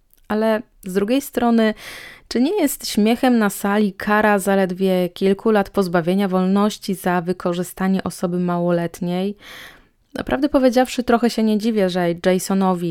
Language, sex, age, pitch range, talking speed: Polish, female, 20-39, 185-210 Hz, 130 wpm